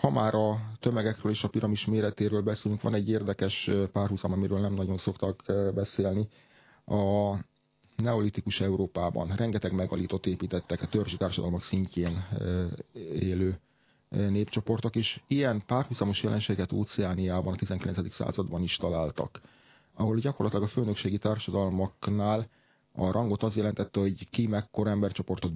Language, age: Hungarian, 30-49